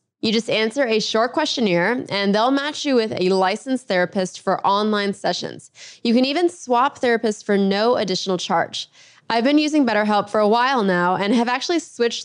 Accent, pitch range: American, 205-260 Hz